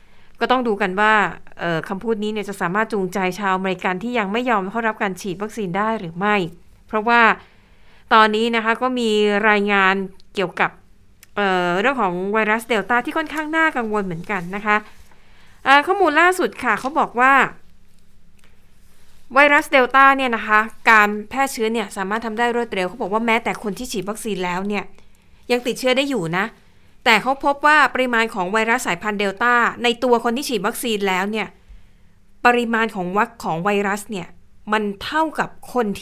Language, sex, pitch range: Thai, female, 195-240 Hz